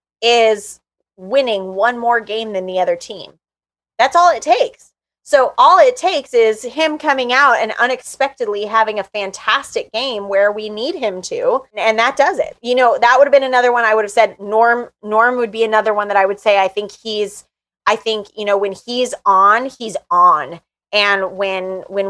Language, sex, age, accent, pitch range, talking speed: English, female, 20-39, American, 200-260 Hz, 200 wpm